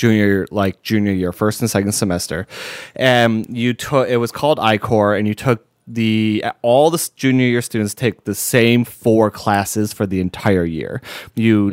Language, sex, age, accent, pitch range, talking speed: English, male, 20-39, American, 100-120 Hz, 180 wpm